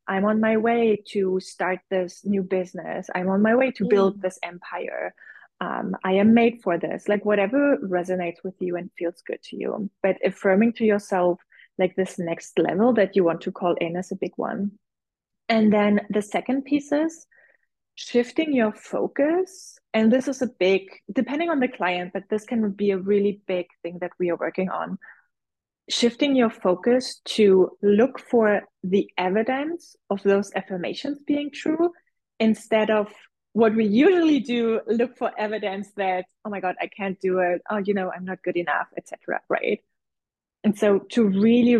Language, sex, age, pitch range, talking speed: English, female, 20-39, 190-240 Hz, 180 wpm